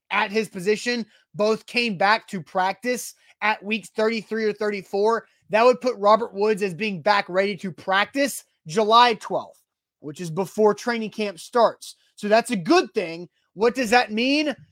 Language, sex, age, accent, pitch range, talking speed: English, male, 30-49, American, 195-245 Hz, 165 wpm